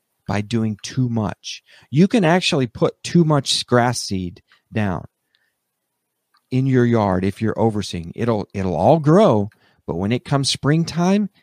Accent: American